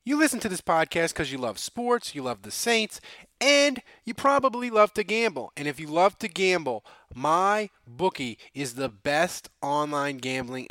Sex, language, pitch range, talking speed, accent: male, English, 155-225 Hz, 180 wpm, American